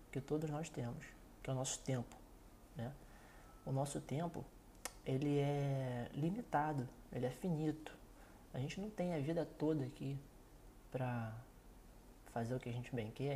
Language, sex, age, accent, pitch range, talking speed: Portuguese, male, 20-39, Brazilian, 130-170 Hz, 160 wpm